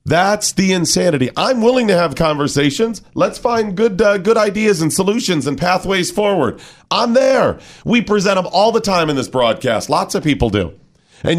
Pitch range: 140-210 Hz